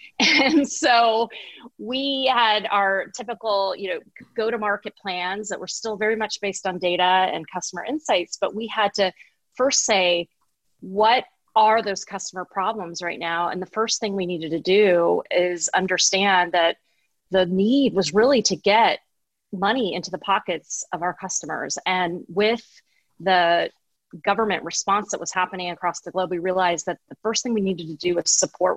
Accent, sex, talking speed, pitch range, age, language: American, female, 170 wpm, 175-215 Hz, 30-49, English